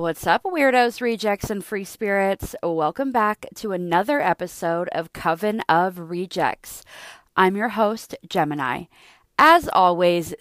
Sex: female